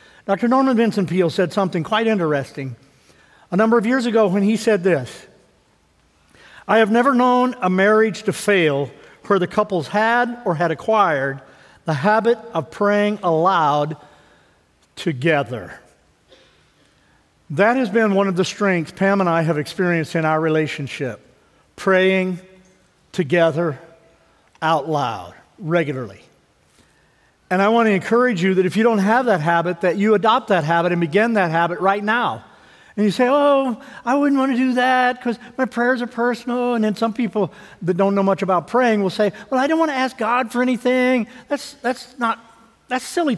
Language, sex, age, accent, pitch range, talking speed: English, male, 50-69, American, 175-240 Hz, 170 wpm